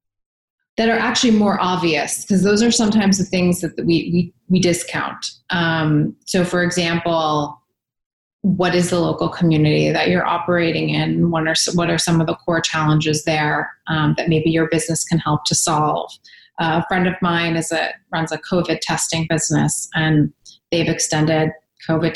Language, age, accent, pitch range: English, 30-49, American, 160-180 Hz